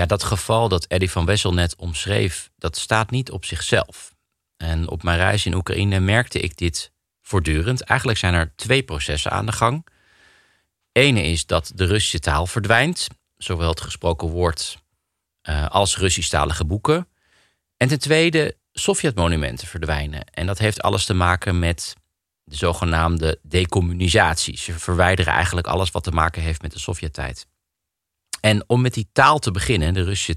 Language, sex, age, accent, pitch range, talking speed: Dutch, male, 40-59, Dutch, 85-115 Hz, 160 wpm